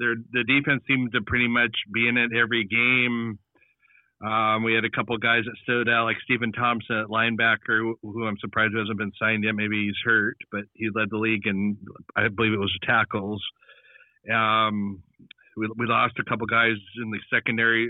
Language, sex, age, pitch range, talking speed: English, male, 40-59, 110-125 Hz, 190 wpm